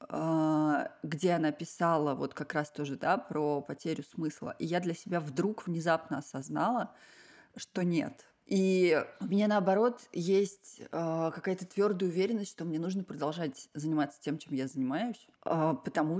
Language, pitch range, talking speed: Russian, 145-185 Hz, 140 wpm